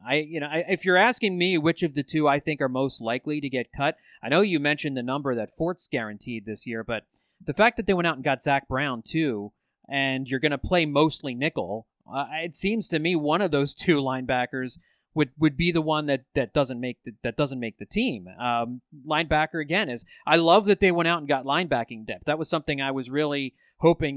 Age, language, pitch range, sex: 30-49, English, 135-175 Hz, male